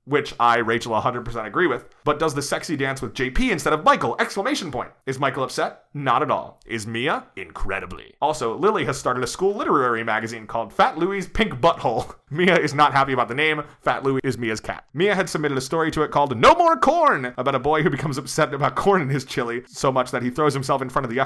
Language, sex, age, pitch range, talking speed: English, male, 30-49, 120-150 Hz, 235 wpm